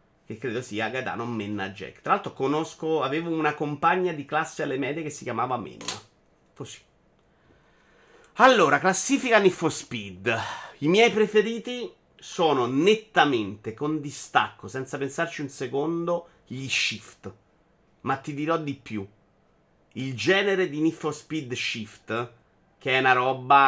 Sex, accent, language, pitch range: male, native, Italian, 110-150 Hz